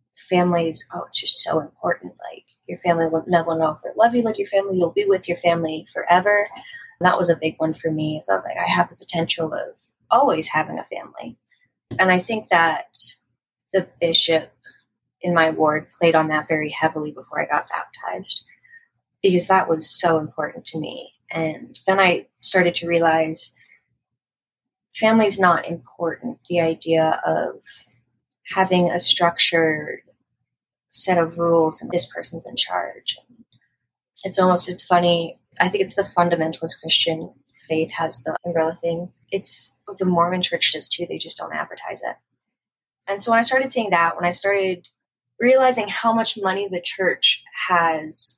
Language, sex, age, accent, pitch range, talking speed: English, female, 20-39, American, 160-185 Hz, 170 wpm